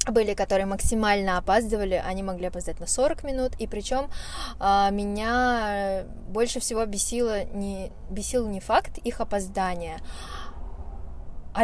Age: 20-39